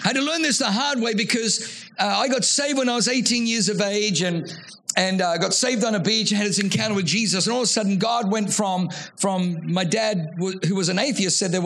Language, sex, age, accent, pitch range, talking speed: English, male, 50-69, British, 185-225 Hz, 275 wpm